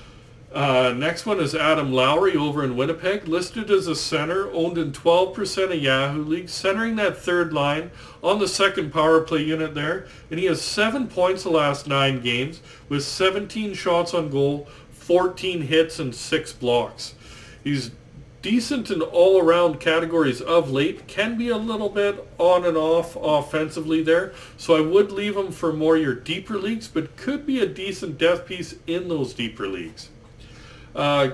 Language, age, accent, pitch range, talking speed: English, 50-69, American, 140-185 Hz, 170 wpm